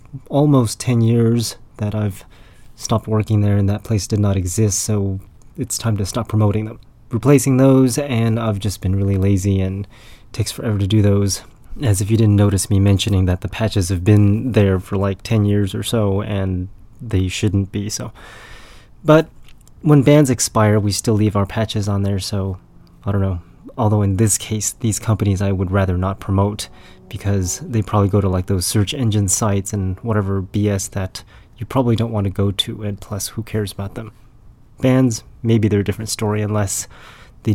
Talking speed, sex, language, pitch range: 190 wpm, male, English, 100-115 Hz